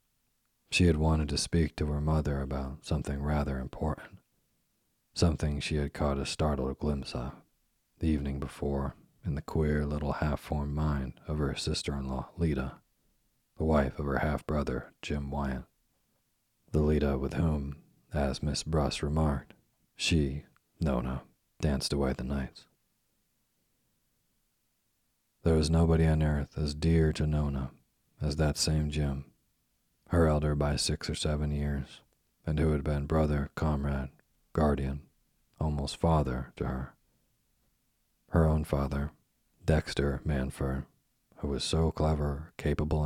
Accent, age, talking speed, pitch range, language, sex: American, 40-59, 130 wpm, 70-75 Hz, English, male